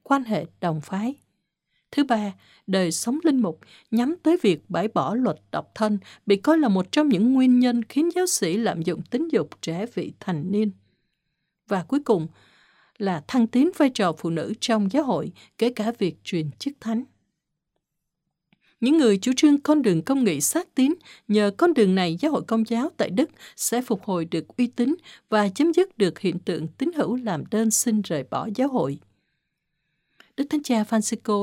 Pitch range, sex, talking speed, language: 185-270 Hz, female, 195 wpm, Vietnamese